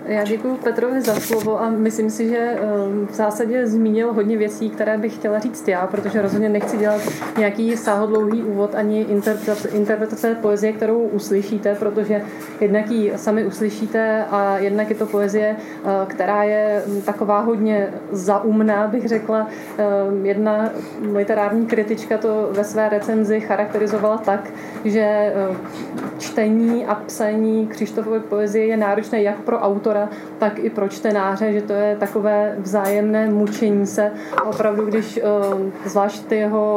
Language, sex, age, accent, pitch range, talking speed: Czech, female, 30-49, native, 200-220 Hz, 140 wpm